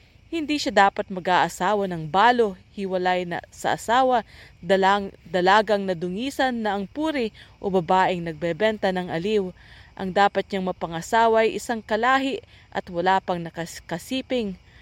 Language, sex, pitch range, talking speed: English, female, 180-220 Hz, 125 wpm